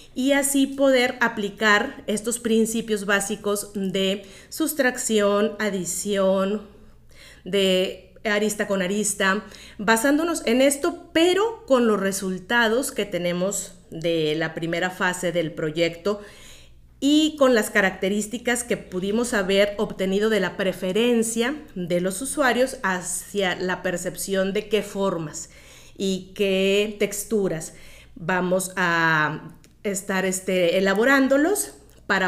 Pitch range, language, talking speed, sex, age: 190-240 Hz, Spanish, 105 wpm, female, 40-59